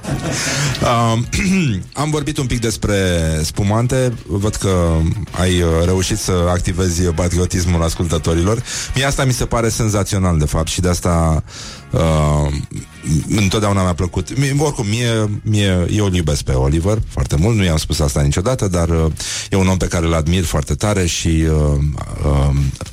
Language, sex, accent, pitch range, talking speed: Romanian, male, native, 85-120 Hz, 155 wpm